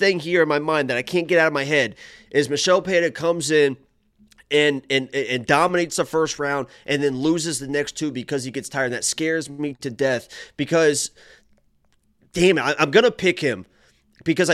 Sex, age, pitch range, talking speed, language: male, 20-39, 140-180 Hz, 200 wpm, English